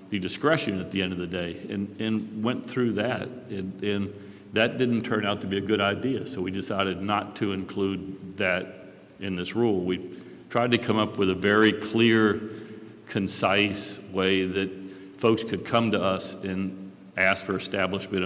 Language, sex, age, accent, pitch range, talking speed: English, male, 50-69, American, 95-110 Hz, 180 wpm